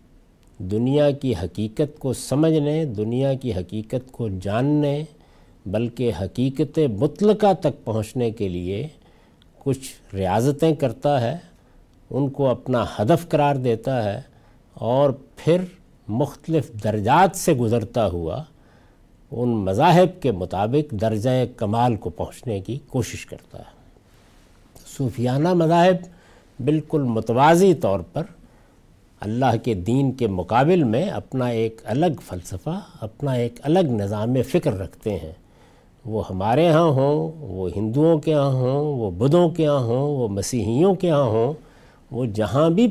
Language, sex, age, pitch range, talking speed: Urdu, male, 60-79, 110-145 Hz, 130 wpm